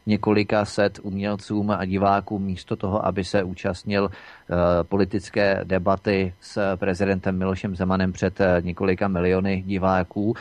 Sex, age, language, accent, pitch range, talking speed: male, 30-49, Czech, native, 100-115 Hz, 115 wpm